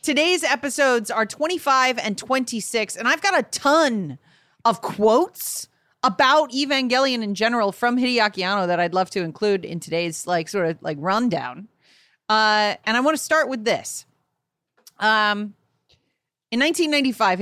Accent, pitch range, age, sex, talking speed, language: American, 190-250 Hz, 30-49, female, 150 wpm, English